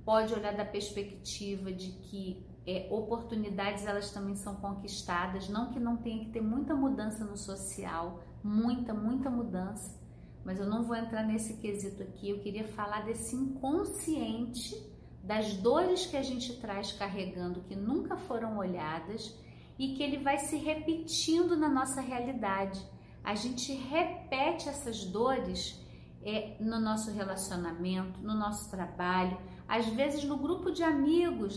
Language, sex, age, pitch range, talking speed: Portuguese, female, 40-59, 200-265 Hz, 145 wpm